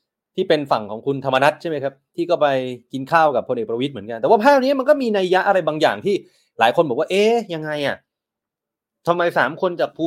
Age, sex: 30-49, male